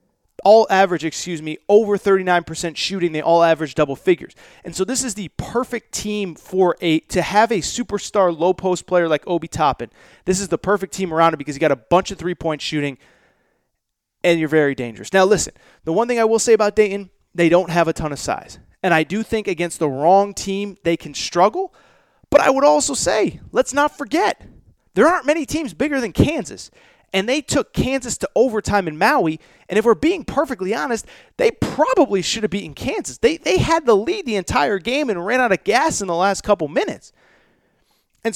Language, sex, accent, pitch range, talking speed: English, male, American, 170-255 Hz, 210 wpm